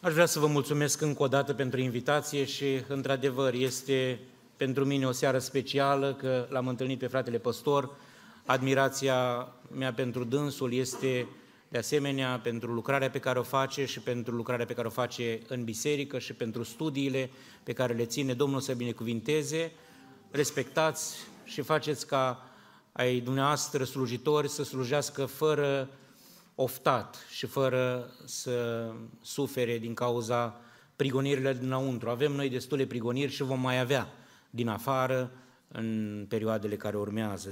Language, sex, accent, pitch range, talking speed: Romanian, male, native, 115-140 Hz, 140 wpm